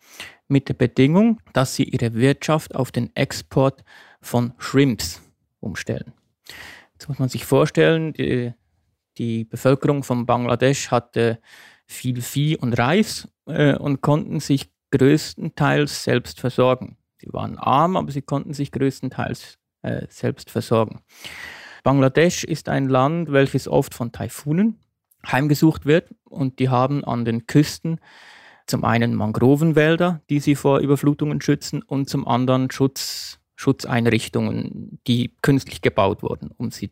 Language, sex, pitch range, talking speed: German, male, 125-155 Hz, 125 wpm